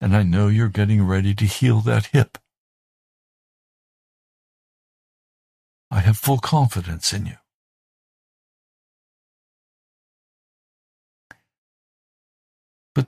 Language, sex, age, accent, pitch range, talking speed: English, male, 60-79, American, 100-125 Hz, 80 wpm